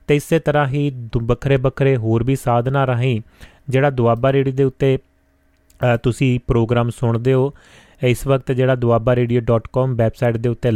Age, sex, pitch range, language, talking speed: 30-49, male, 120-135 Hz, Punjabi, 155 wpm